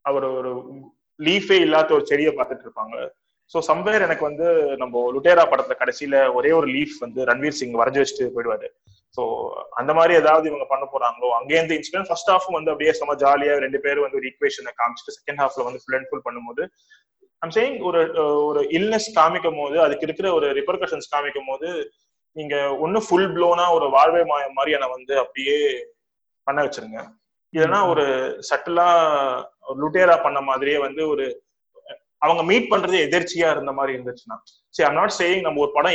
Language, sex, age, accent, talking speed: Tamil, male, 20-39, native, 150 wpm